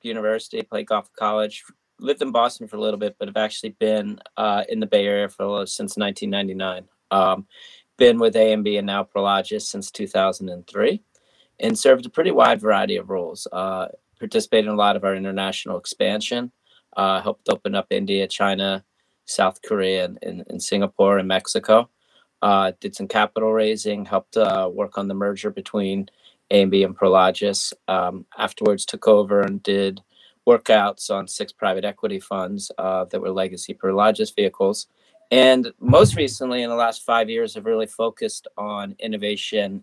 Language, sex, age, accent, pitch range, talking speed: English, male, 30-49, American, 95-115 Hz, 165 wpm